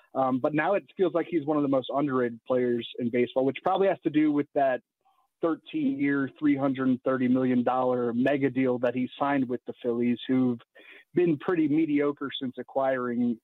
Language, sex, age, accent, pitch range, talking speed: English, male, 30-49, American, 130-155 Hz, 175 wpm